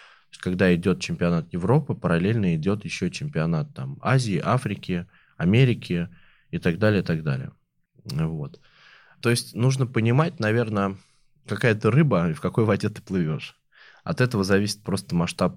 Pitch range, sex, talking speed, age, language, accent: 90-140 Hz, male, 145 wpm, 20-39, Russian, native